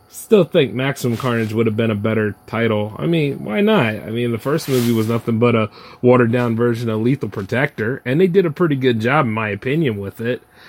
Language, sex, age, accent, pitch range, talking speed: English, male, 30-49, American, 110-155 Hz, 225 wpm